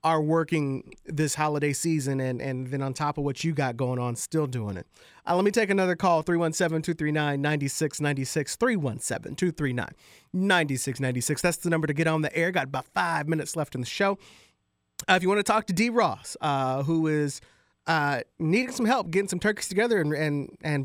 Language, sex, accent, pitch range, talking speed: English, male, American, 140-180 Hz, 190 wpm